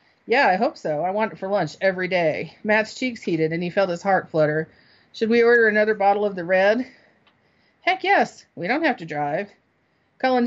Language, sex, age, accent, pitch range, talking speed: English, female, 40-59, American, 170-225 Hz, 205 wpm